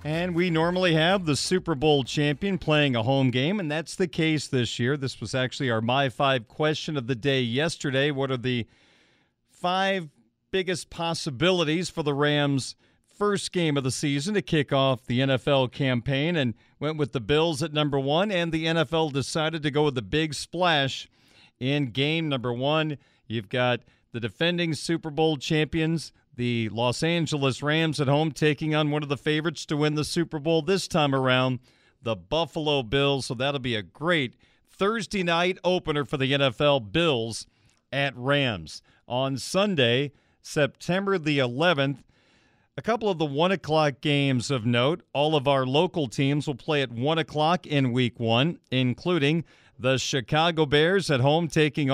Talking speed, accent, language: 170 wpm, American, English